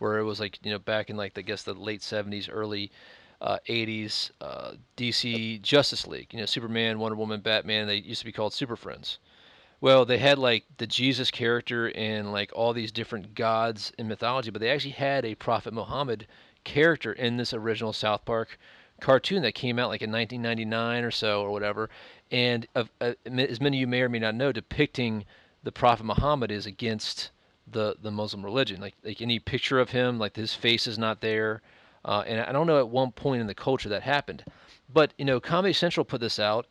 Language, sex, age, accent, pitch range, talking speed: English, male, 40-59, American, 110-125 Hz, 210 wpm